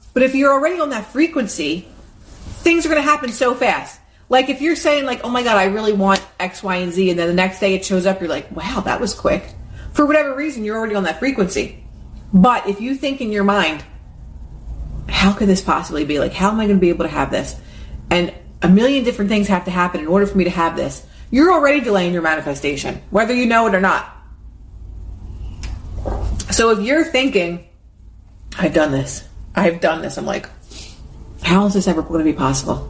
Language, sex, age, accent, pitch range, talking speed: English, female, 30-49, American, 155-255 Hz, 220 wpm